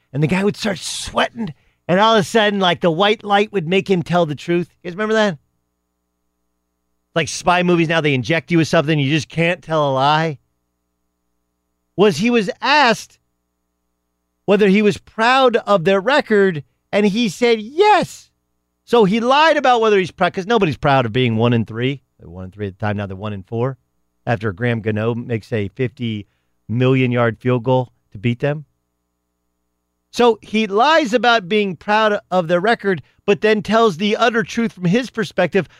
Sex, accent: male, American